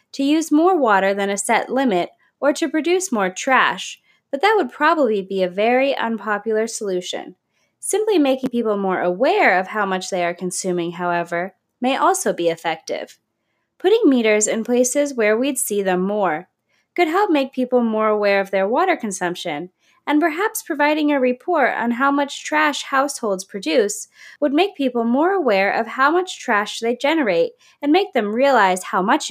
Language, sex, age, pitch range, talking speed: English, female, 10-29, 200-295 Hz, 175 wpm